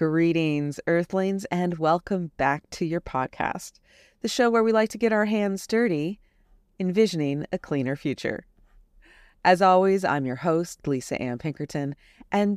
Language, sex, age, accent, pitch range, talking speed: English, female, 30-49, American, 150-195 Hz, 150 wpm